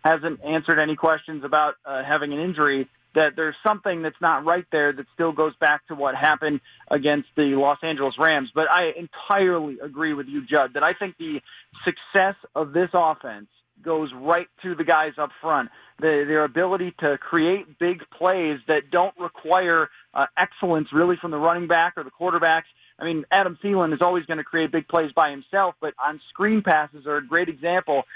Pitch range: 150-180 Hz